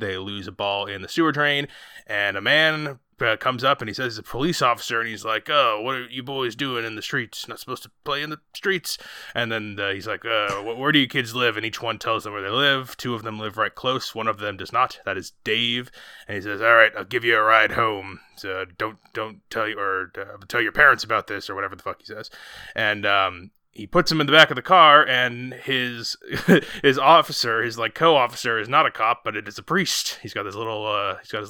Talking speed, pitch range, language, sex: 265 wpm, 105-135 Hz, English, male